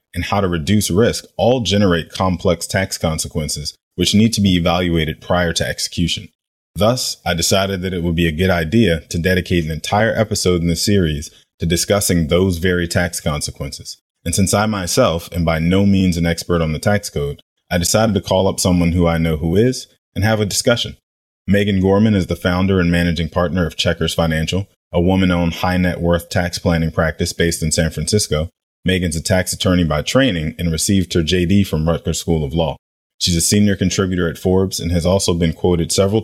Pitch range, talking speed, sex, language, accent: 85-95 Hz, 195 wpm, male, English, American